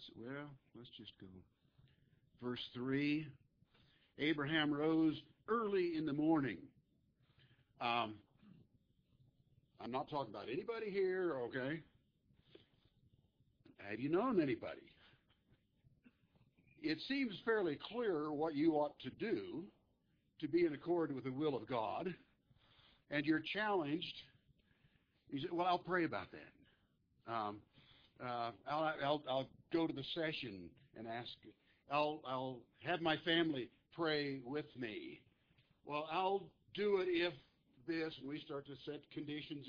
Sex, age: male, 60-79